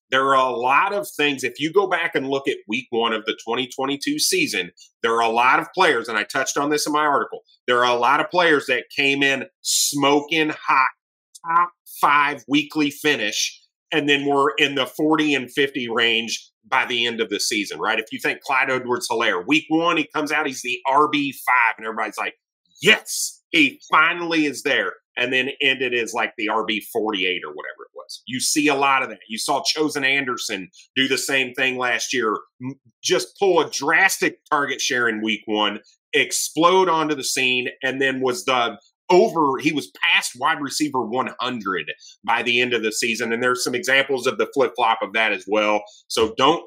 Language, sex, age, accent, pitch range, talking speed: English, male, 30-49, American, 120-155 Hz, 200 wpm